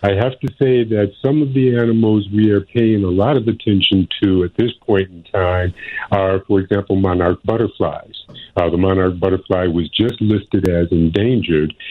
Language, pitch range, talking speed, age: English, 90-105 Hz, 180 wpm, 50-69